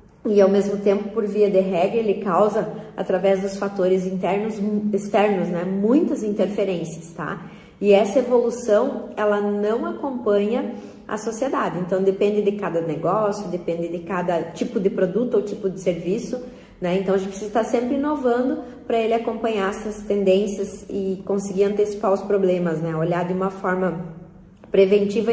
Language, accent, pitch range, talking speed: Portuguese, Brazilian, 180-215 Hz, 155 wpm